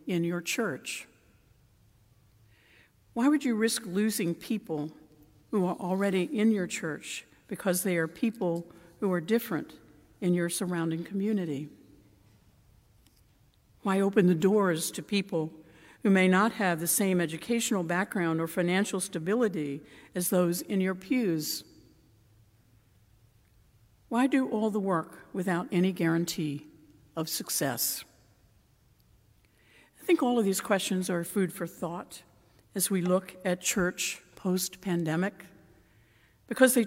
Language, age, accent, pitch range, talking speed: English, 60-79, American, 145-195 Hz, 125 wpm